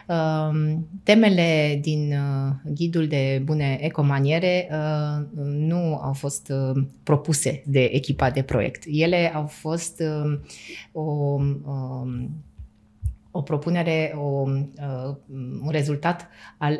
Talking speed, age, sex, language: 110 wpm, 20-39, female, Romanian